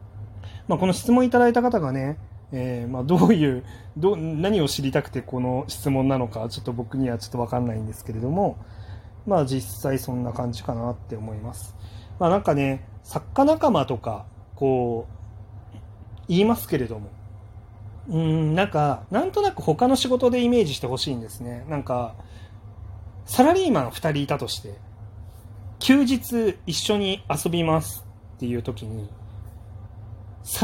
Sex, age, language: male, 30-49, Japanese